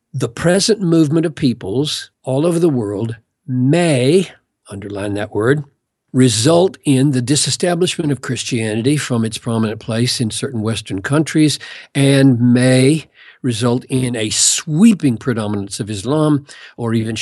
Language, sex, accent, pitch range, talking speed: English, male, American, 115-140 Hz, 130 wpm